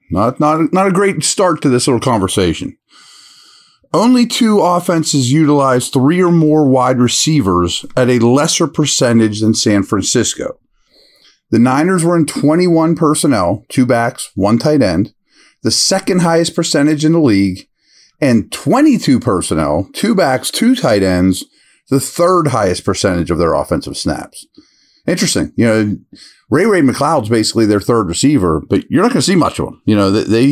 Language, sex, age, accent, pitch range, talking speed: English, male, 40-59, American, 105-160 Hz, 160 wpm